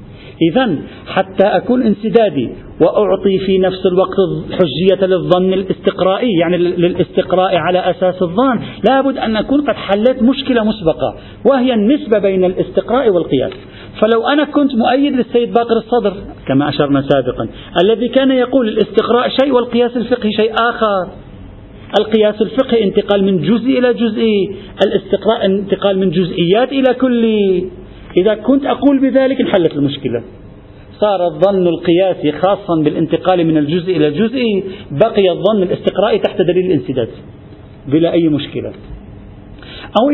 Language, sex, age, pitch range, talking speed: Arabic, male, 50-69, 165-230 Hz, 125 wpm